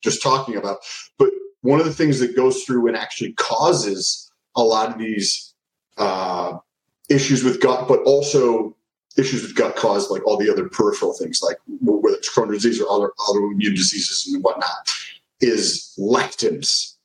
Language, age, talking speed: English, 30-49, 165 wpm